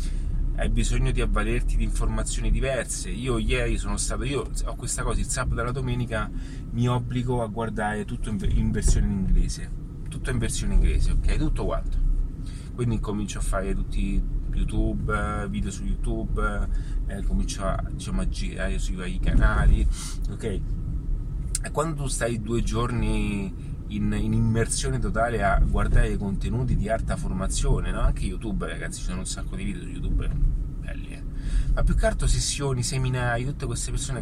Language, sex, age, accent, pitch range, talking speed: Italian, male, 30-49, native, 105-125 Hz, 170 wpm